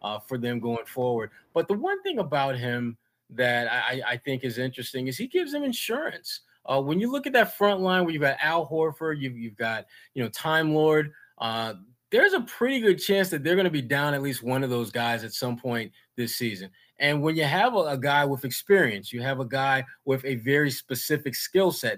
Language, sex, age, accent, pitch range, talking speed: English, male, 20-39, American, 120-165 Hz, 230 wpm